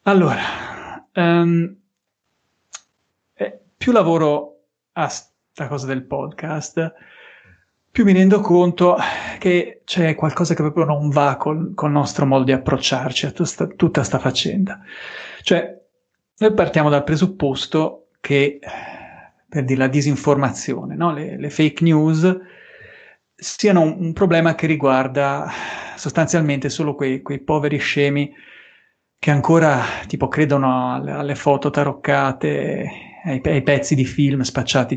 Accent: native